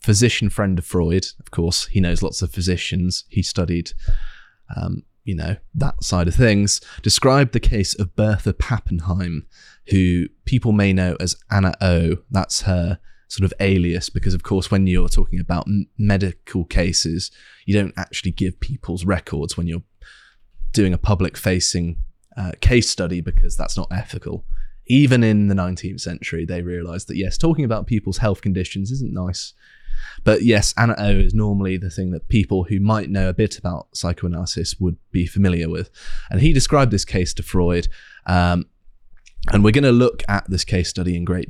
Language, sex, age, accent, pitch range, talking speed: English, male, 20-39, British, 90-105 Hz, 175 wpm